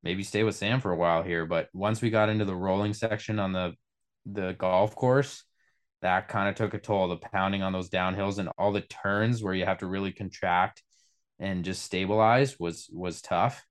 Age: 20-39